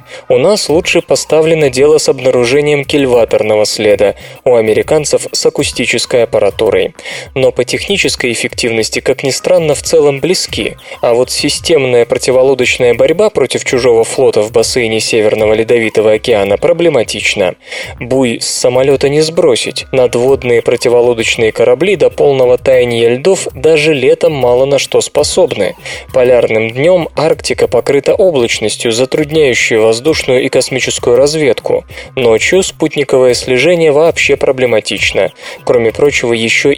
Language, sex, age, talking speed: Russian, male, 20-39, 120 wpm